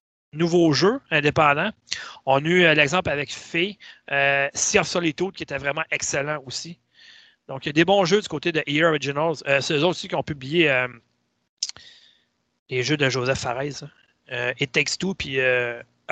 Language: French